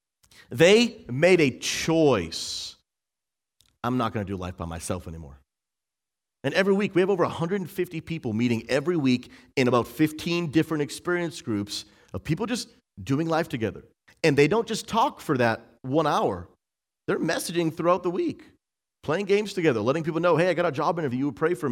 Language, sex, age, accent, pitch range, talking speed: English, male, 40-59, American, 120-175 Hz, 180 wpm